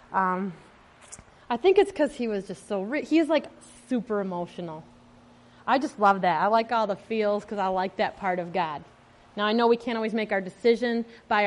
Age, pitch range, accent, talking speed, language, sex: 30-49, 195-255 Hz, American, 210 wpm, English, female